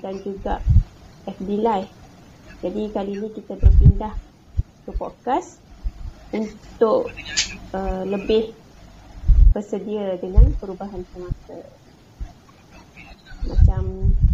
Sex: female